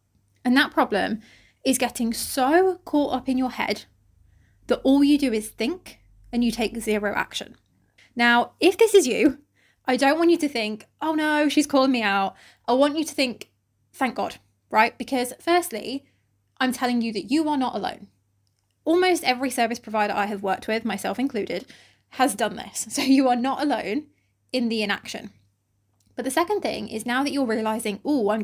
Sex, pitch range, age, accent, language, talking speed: female, 205-270 Hz, 20-39, British, English, 190 wpm